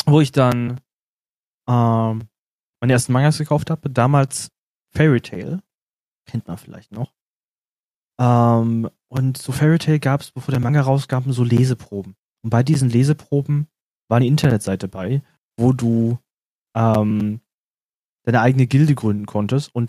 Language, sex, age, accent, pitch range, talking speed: German, male, 20-39, German, 115-140 Hz, 140 wpm